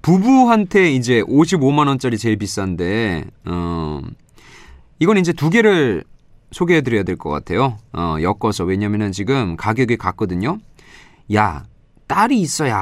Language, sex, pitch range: Korean, male, 95-160 Hz